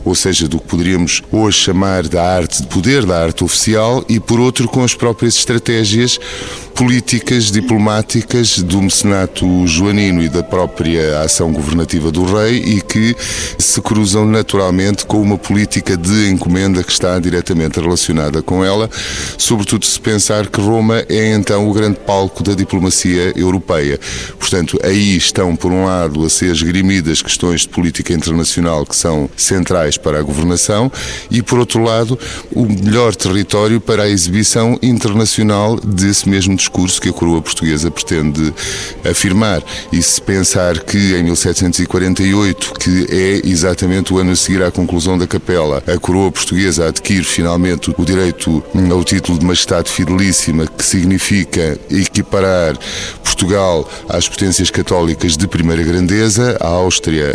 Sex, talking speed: male, 150 wpm